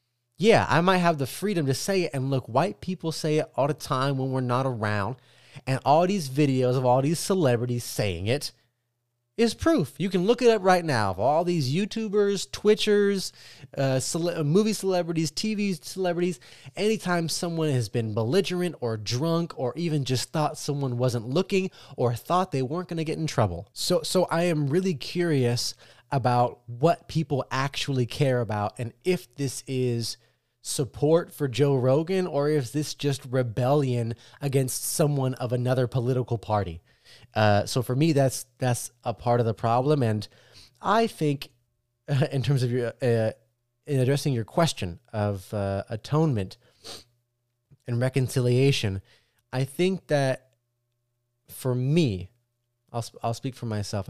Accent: American